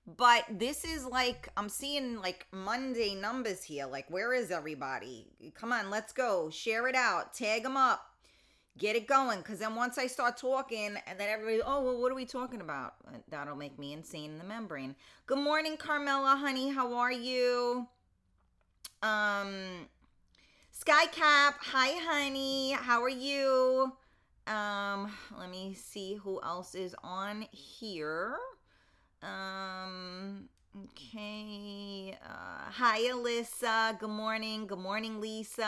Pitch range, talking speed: 195-250 Hz, 140 wpm